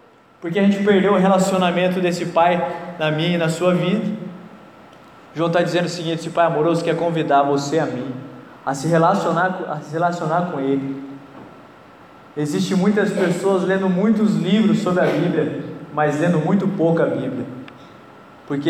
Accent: Brazilian